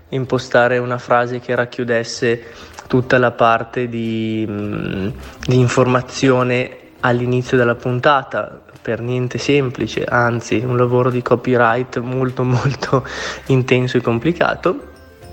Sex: male